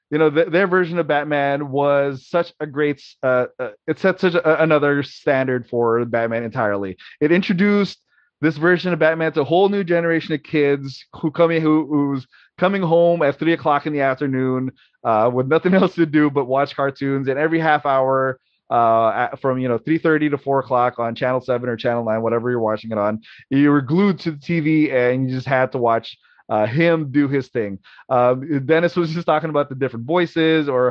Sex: male